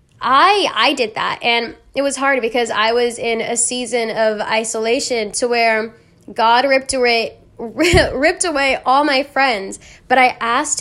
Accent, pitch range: American, 230-290 Hz